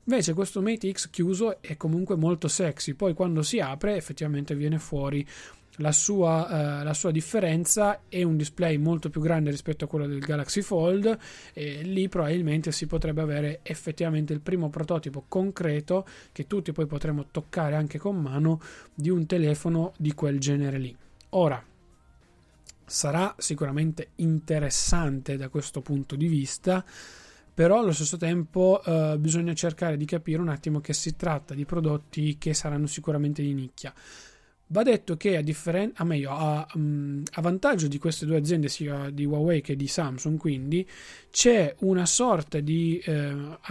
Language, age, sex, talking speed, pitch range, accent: Italian, 20-39, male, 160 wpm, 150-180 Hz, native